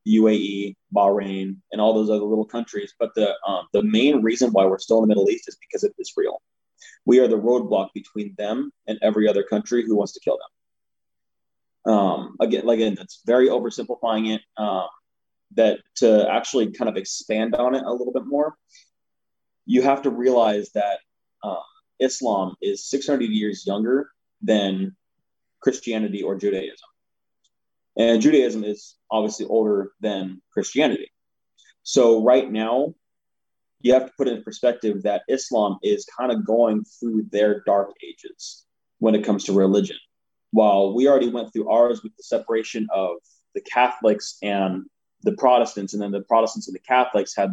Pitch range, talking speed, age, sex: 105-125 Hz, 165 wpm, 20-39, male